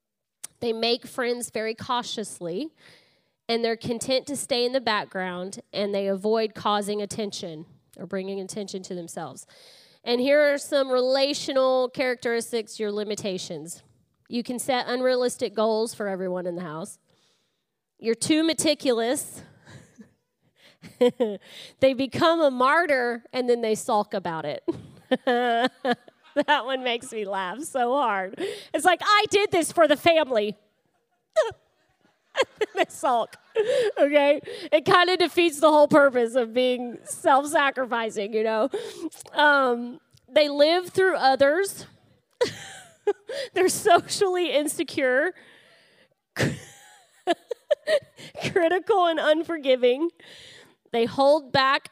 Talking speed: 115 wpm